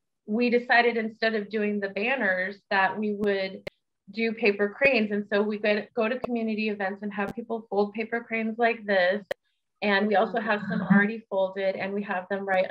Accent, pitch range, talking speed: American, 195-230 Hz, 195 wpm